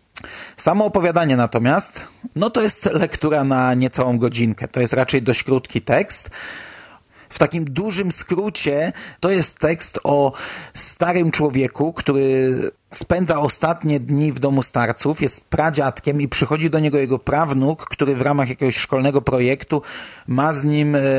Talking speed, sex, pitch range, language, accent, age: 140 wpm, male, 120-145 Hz, Polish, native, 30-49